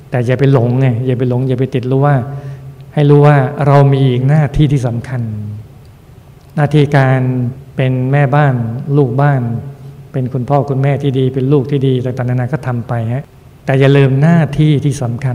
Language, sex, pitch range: Thai, male, 125-140 Hz